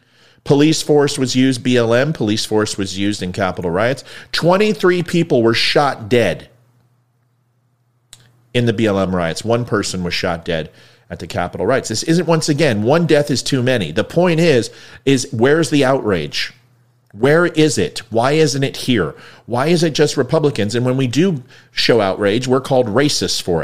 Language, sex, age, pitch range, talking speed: English, male, 40-59, 120-150 Hz, 175 wpm